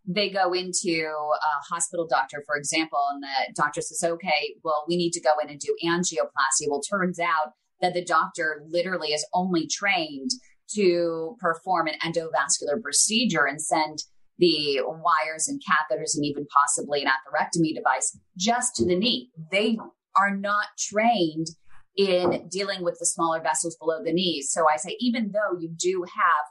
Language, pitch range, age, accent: English, 155-200 Hz, 30-49, American